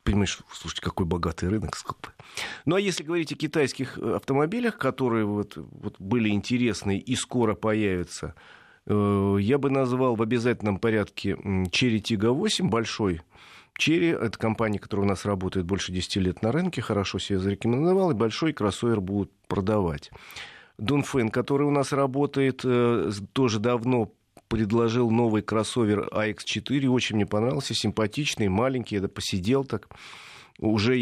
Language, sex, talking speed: Russian, male, 140 wpm